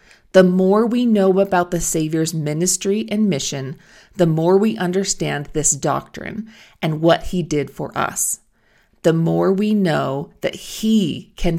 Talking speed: 150 wpm